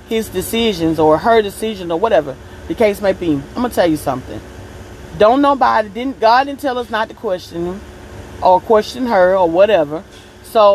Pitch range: 175-225 Hz